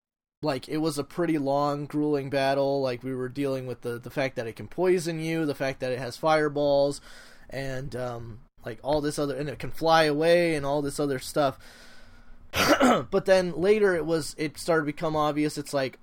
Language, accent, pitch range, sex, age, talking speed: English, American, 135-160 Hz, male, 20-39, 205 wpm